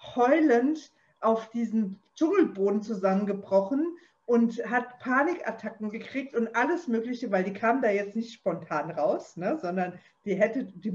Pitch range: 190-255 Hz